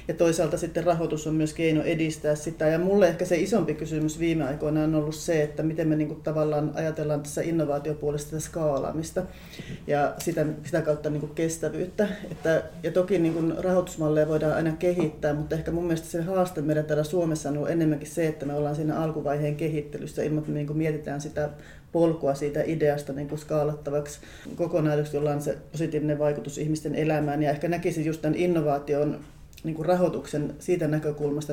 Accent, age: native, 30-49